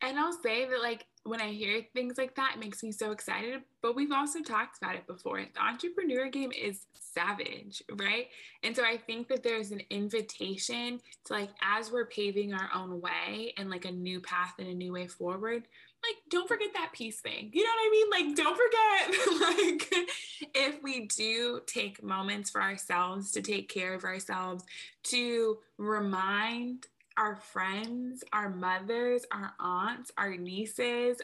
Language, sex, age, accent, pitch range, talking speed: English, female, 20-39, American, 190-240 Hz, 175 wpm